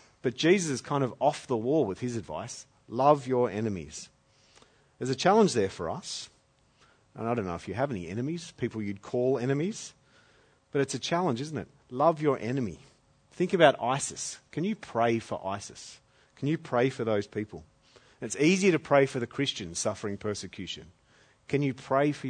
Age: 40-59